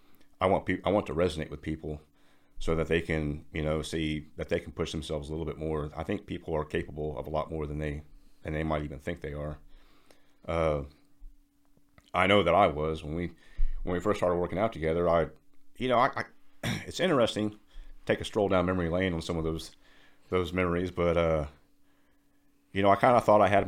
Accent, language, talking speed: American, English, 220 wpm